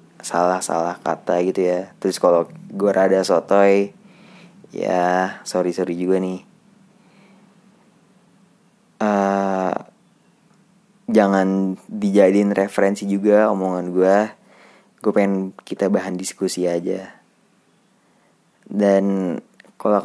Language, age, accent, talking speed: Indonesian, 20-39, native, 90 wpm